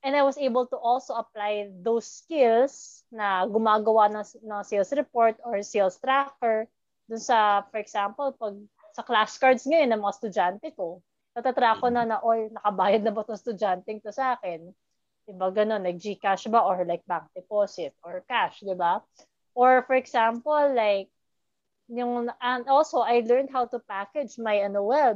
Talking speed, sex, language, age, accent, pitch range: 160 wpm, female, English, 20-39, Filipino, 205-270 Hz